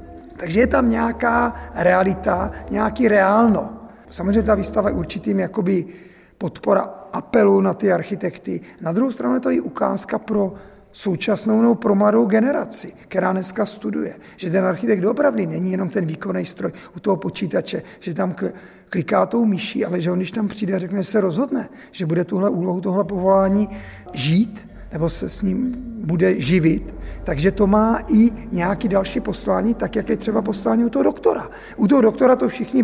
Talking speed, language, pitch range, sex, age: 170 wpm, Czech, 185-225 Hz, male, 50-69